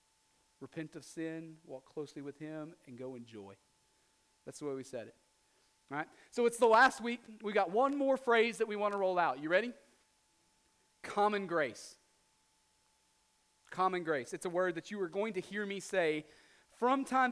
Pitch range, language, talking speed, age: 175-225 Hz, English, 185 wpm, 30-49